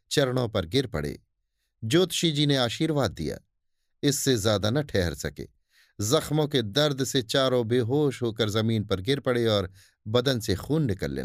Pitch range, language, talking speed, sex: 105-140 Hz, Hindi, 160 wpm, male